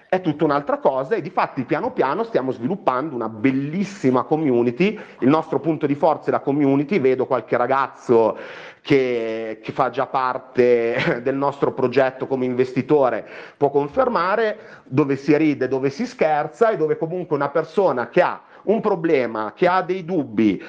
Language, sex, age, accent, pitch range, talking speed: Italian, male, 30-49, native, 135-200 Hz, 160 wpm